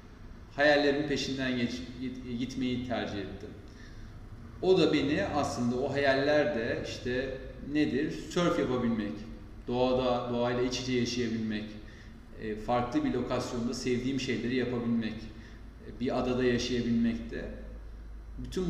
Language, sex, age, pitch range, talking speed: Turkish, male, 40-59, 110-130 Hz, 105 wpm